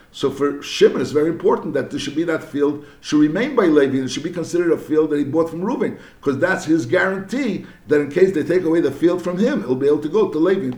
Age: 60-79